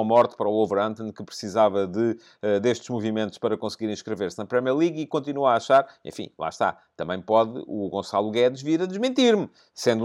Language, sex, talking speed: English, male, 180 wpm